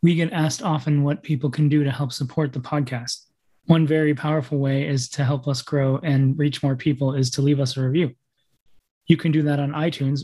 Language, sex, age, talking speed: English, male, 20-39, 225 wpm